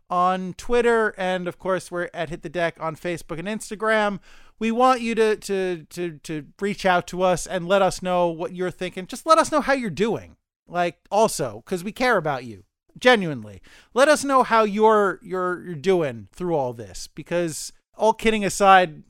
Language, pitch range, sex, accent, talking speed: English, 160-200 Hz, male, American, 195 wpm